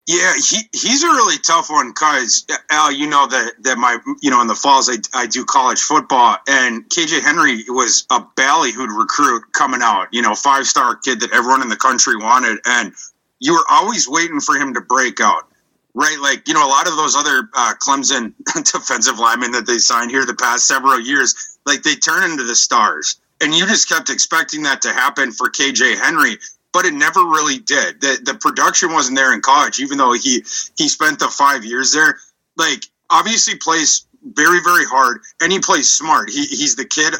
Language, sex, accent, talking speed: English, male, American, 205 wpm